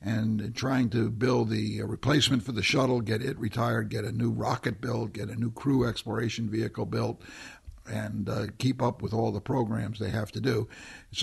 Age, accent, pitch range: 60-79, American, 105-125 Hz